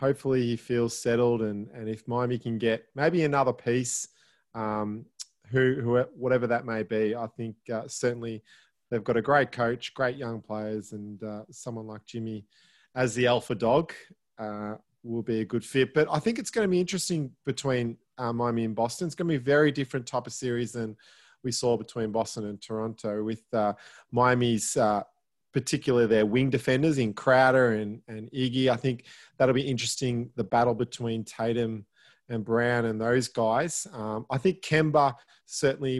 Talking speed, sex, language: 180 wpm, male, English